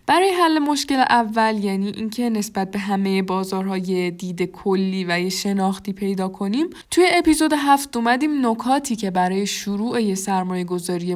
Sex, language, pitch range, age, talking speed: female, Persian, 190-250 Hz, 10-29, 145 wpm